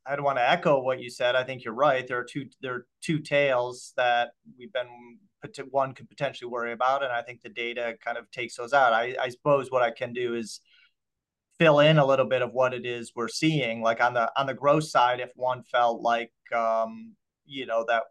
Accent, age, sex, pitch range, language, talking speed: American, 30-49, male, 115-135 Hz, English, 235 wpm